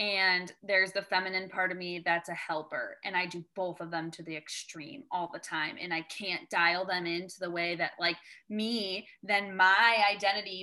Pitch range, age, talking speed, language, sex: 175-200 Hz, 20-39, 205 wpm, English, female